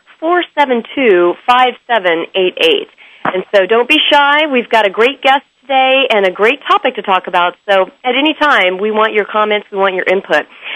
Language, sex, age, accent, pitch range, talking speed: English, female, 40-59, American, 195-270 Hz, 205 wpm